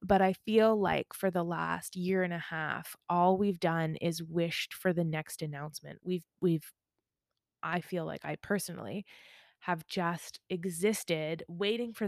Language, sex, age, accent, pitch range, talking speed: English, female, 20-39, American, 170-200 Hz, 160 wpm